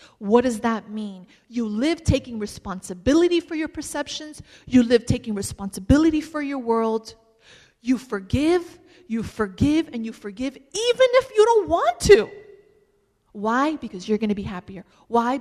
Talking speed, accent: 150 wpm, American